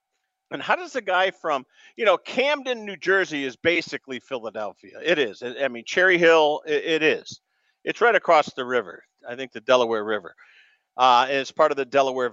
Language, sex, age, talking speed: English, male, 50-69, 185 wpm